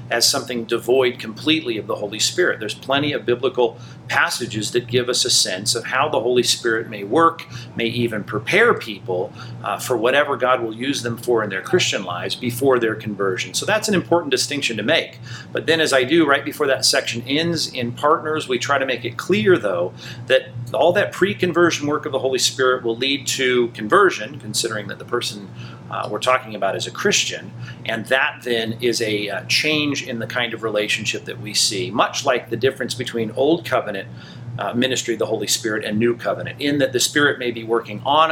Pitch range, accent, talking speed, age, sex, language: 115-140 Hz, American, 210 wpm, 40-59, male, English